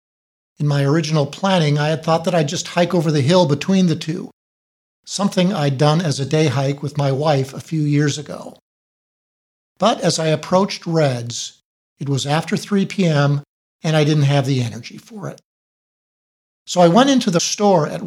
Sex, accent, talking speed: male, American, 185 wpm